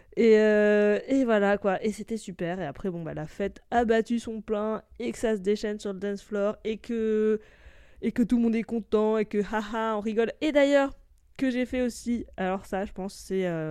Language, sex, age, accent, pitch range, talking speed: French, female, 20-39, French, 190-230 Hz, 230 wpm